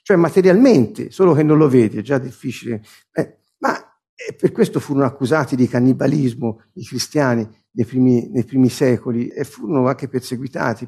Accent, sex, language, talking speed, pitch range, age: native, male, Italian, 160 wpm, 140-220 Hz, 50-69